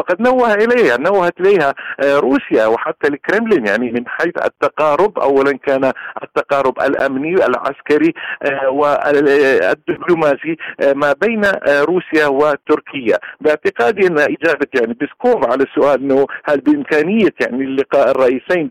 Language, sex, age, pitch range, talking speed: Arabic, male, 50-69, 140-180 Hz, 110 wpm